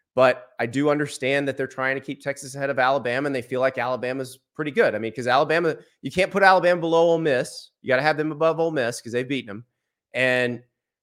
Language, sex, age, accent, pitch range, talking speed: English, male, 30-49, American, 125-165 Hz, 240 wpm